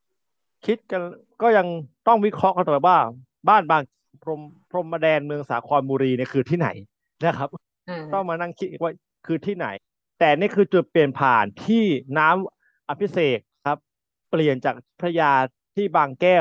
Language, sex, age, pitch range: Thai, male, 30-49, 135-175 Hz